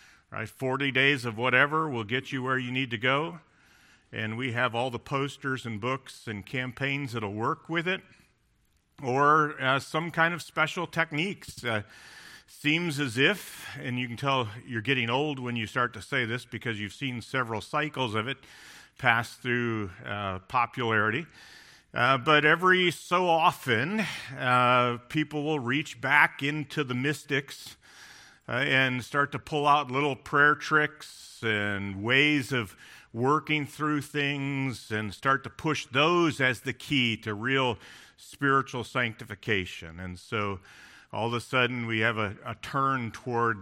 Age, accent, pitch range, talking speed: 50-69, American, 115-145 Hz, 160 wpm